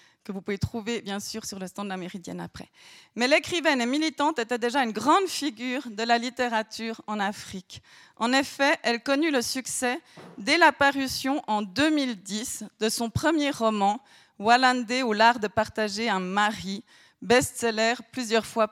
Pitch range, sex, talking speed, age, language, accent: 220-275 Hz, female, 175 wpm, 30-49, French, French